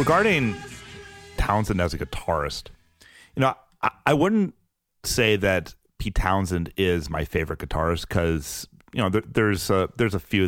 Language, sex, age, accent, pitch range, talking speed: English, male, 40-59, American, 80-100 Hz, 155 wpm